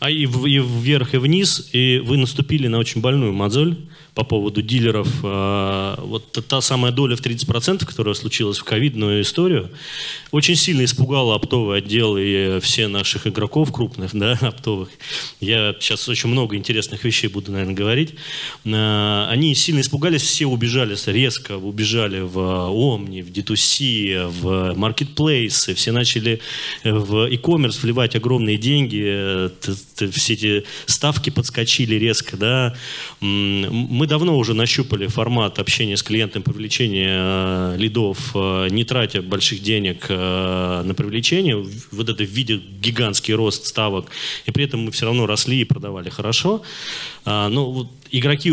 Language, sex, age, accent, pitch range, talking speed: Russian, male, 20-39, native, 105-135 Hz, 140 wpm